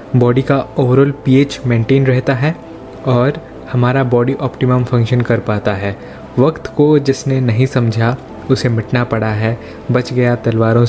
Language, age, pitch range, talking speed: Hindi, 20-39, 120-135 Hz, 150 wpm